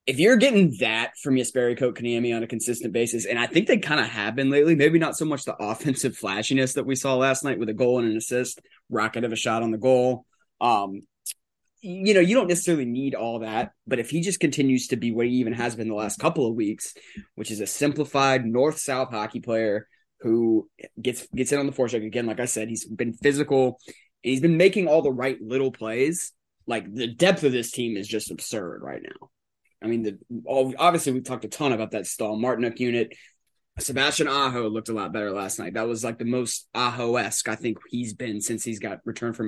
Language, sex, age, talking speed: English, male, 20-39, 230 wpm